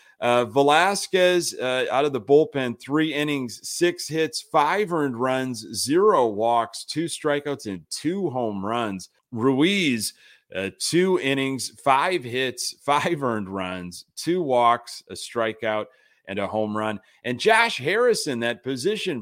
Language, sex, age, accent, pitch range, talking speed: English, male, 30-49, American, 105-145 Hz, 135 wpm